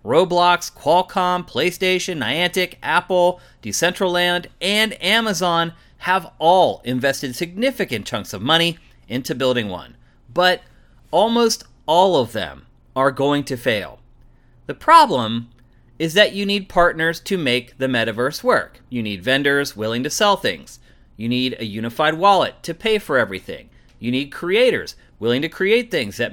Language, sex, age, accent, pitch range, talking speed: English, male, 30-49, American, 130-200 Hz, 145 wpm